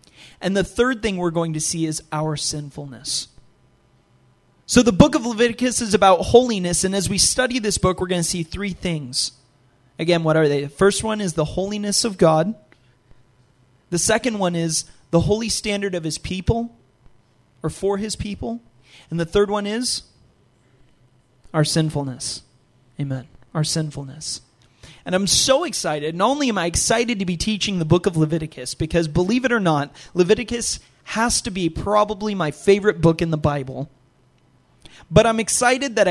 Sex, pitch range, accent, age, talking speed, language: male, 140-210 Hz, American, 30-49, 170 wpm, English